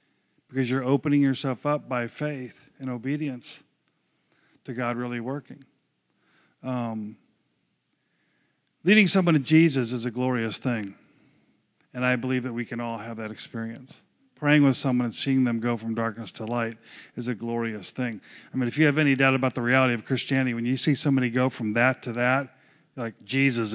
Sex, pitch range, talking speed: male, 115-135 Hz, 180 wpm